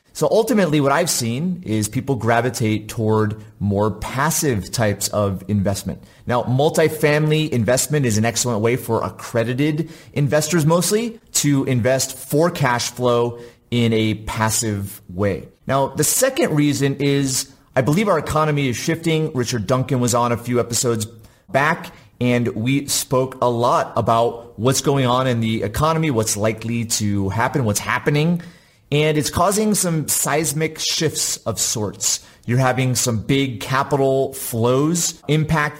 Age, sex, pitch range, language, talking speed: 30-49, male, 115-150 Hz, English, 145 wpm